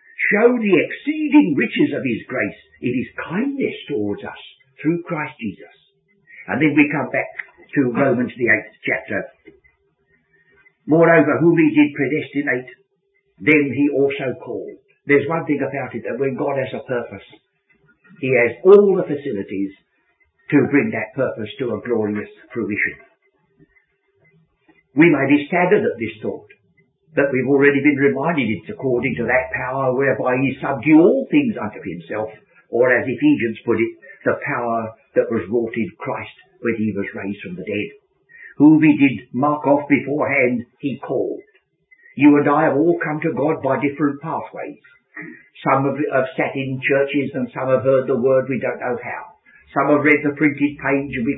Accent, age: British, 60-79